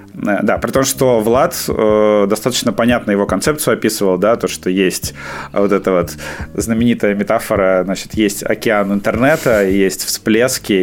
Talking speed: 145 wpm